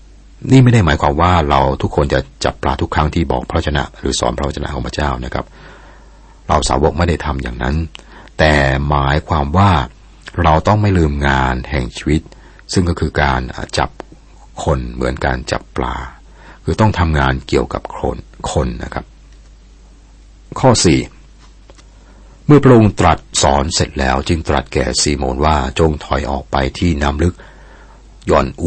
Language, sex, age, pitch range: Thai, male, 60-79, 65-80 Hz